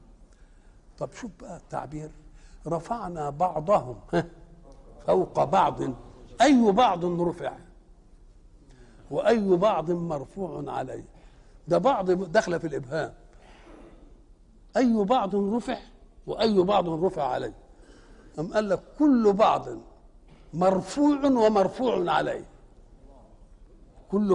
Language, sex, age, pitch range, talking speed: Arabic, male, 60-79, 150-220 Hz, 85 wpm